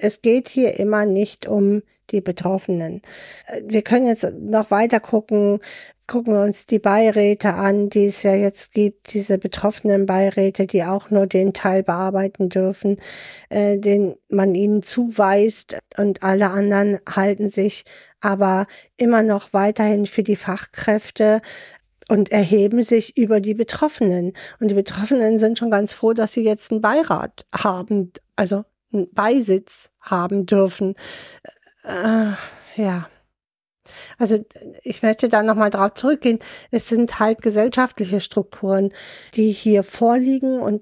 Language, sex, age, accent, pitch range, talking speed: German, female, 50-69, German, 200-230 Hz, 135 wpm